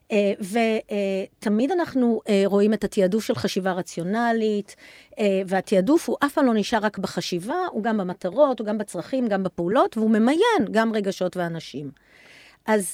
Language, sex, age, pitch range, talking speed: Hebrew, female, 50-69, 190-235 Hz, 160 wpm